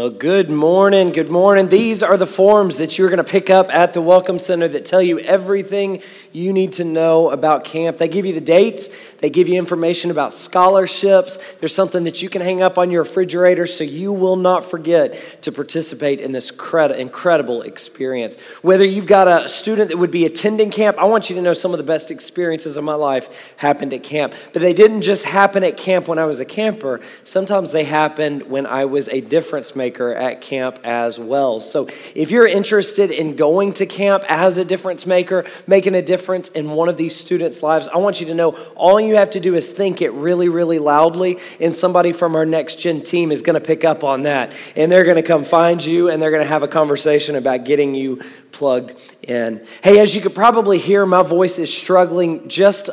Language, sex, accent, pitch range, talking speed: English, male, American, 155-190 Hz, 215 wpm